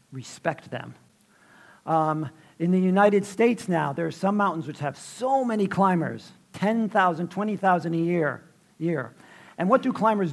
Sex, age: male, 50-69